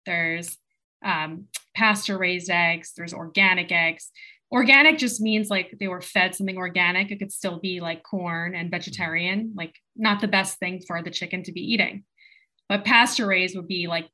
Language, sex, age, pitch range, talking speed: English, female, 20-39, 175-215 Hz, 180 wpm